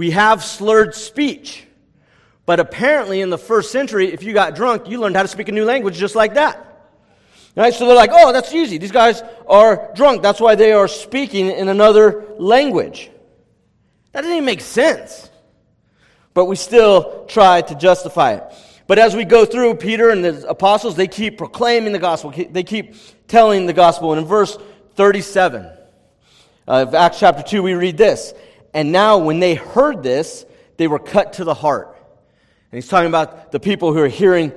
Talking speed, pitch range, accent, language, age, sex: 185 wpm, 155-225 Hz, American, English, 40-59, male